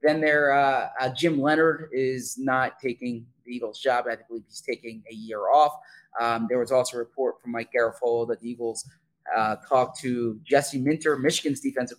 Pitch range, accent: 120-150 Hz, American